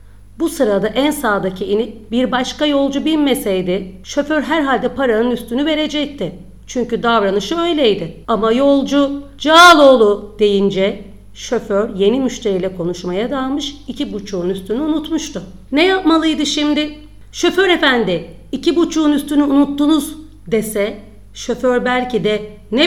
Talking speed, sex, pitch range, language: 115 wpm, female, 200-280 Hz, Turkish